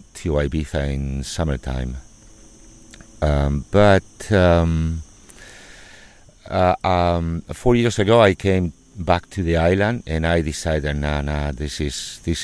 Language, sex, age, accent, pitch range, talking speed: English, male, 50-69, Spanish, 70-85 Hz, 120 wpm